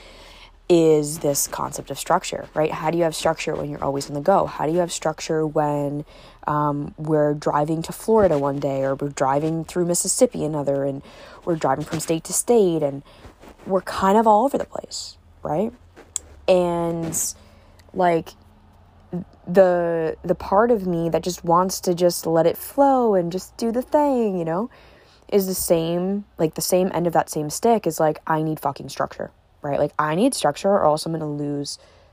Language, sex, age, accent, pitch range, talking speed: English, female, 20-39, American, 145-185 Hz, 190 wpm